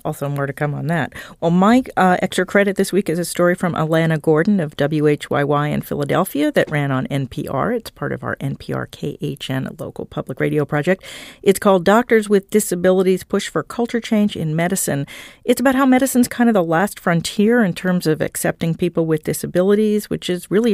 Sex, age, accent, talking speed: female, 50-69, American, 195 wpm